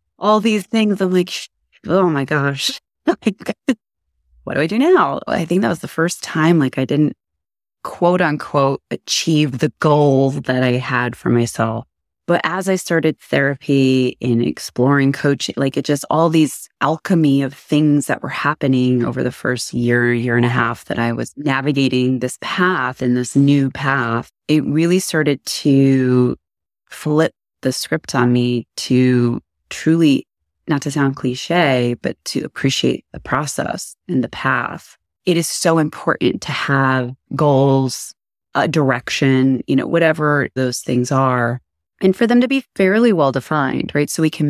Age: 30-49